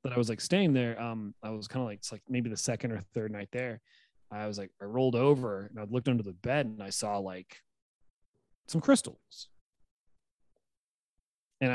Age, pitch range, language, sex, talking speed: 30-49, 105-130 Hz, English, male, 205 wpm